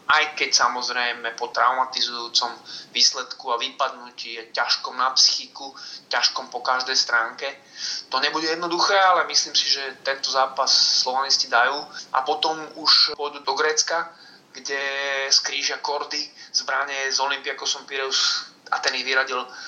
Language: Slovak